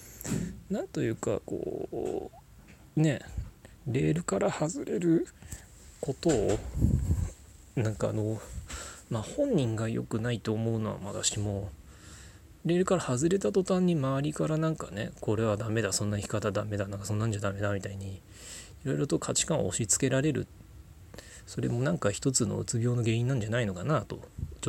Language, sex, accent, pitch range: Japanese, male, native, 100-130 Hz